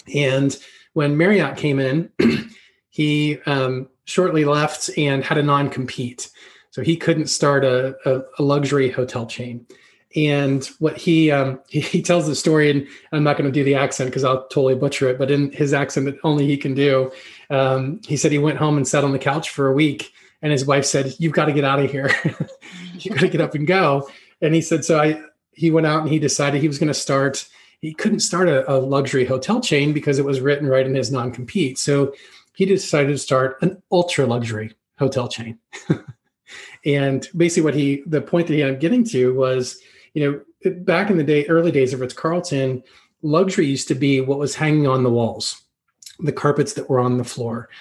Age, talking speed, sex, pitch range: 30-49, 210 wpm, male, 135-160 Hz